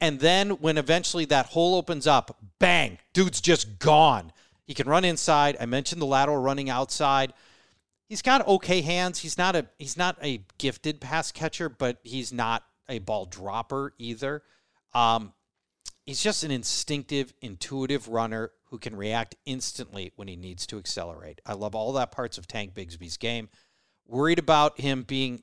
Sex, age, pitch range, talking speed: male, 40-59, 115-155 Hz, 170 wpm